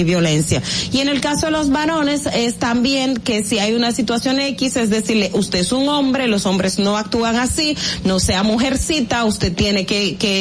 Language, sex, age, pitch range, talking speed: Spanish, female, 30-49, 190-235 Hz, 200 wpm